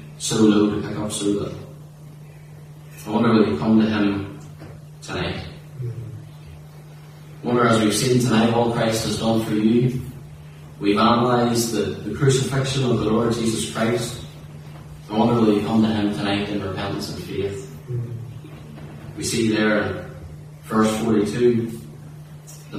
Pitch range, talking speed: 105-130 Hz, 150 wpm